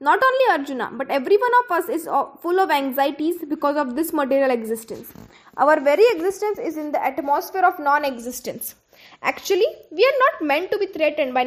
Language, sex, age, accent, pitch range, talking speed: English, female, 10-29, Indian, 270-370 Hz, 185 wpm